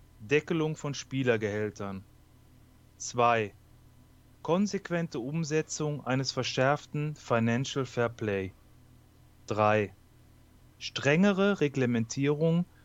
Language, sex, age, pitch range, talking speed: German, male, 30-49, 115-145 Hz, 65 wpm